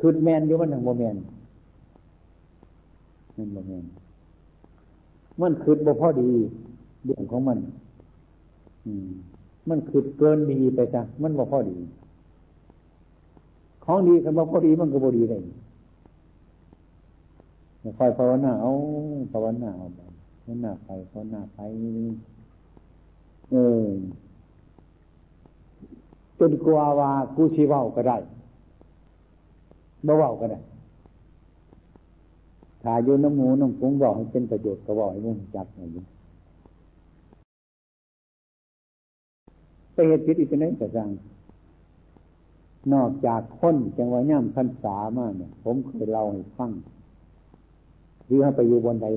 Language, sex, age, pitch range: Thai, male, 60-79, 85-125 Hz